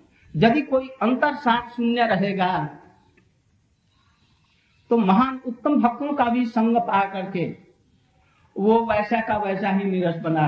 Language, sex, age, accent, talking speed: Hindi, male, 50-69, native, 125 wpm